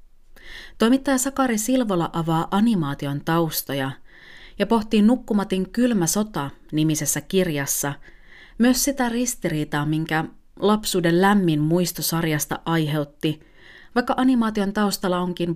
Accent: native